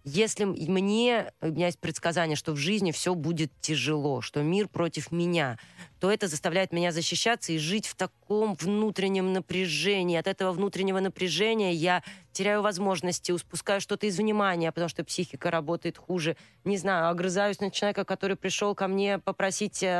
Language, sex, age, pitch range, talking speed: Russian, female, 30-49, 170-210 Hz, 160 wpm